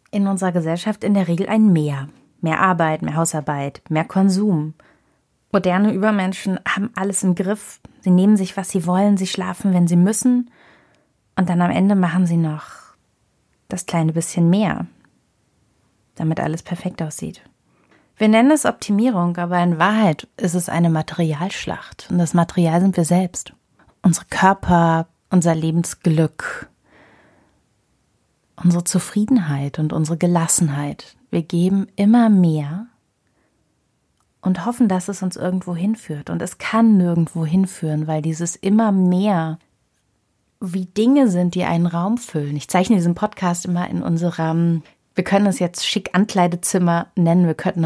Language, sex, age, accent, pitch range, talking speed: German, female, 30-49, German, 165-200 Hz, 145 wpm